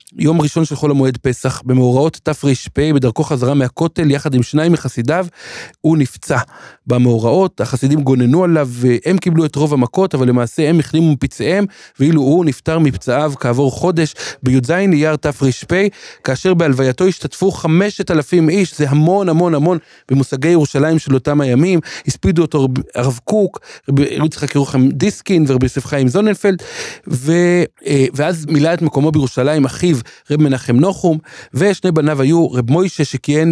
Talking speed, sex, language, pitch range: 120 wpm, male, Hebrew, 135-170 Hz